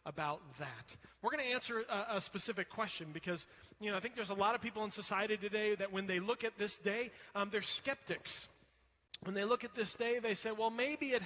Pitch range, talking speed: 170-235 Hz, 235 wpm